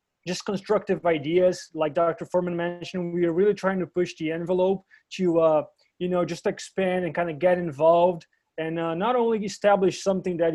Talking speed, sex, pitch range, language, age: 190 wpm, male, 155-180 Hz, English, 20-39